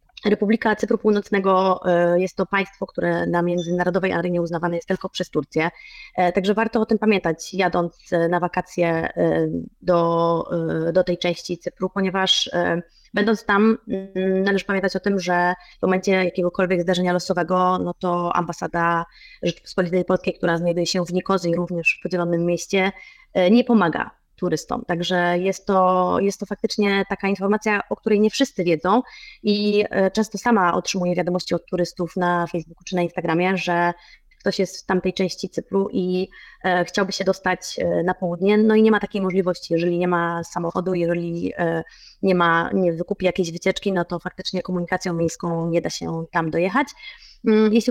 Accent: native